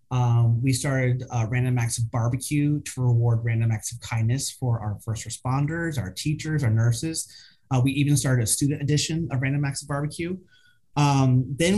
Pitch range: 120-145 Hz